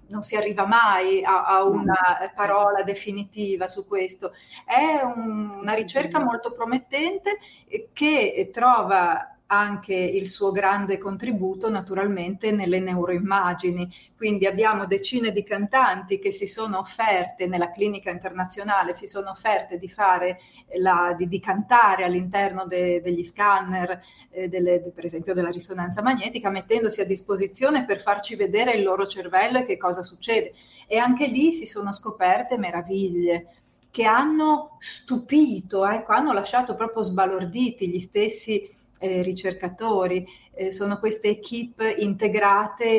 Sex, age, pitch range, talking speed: female, 30-49, 185-225 Hz, 125 wpm